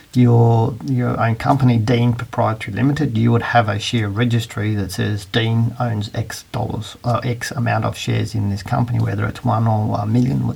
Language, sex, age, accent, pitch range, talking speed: English, male, 40-59, Australian, 105-120 Hz, 190 wpm